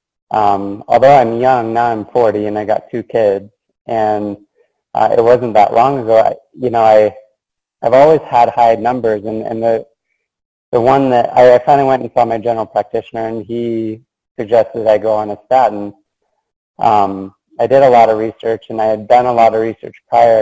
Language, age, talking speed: English, 20-39, 195 wpm